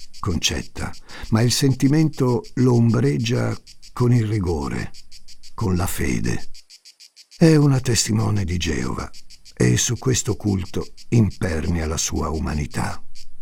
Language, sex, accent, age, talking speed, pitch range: Italian, male, native, 60-79, 110 wpm, 85-120 Hz